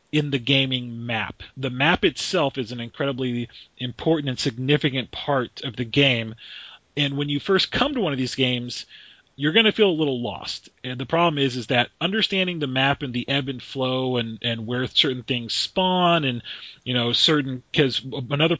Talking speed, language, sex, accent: 195 wpm, English, male, American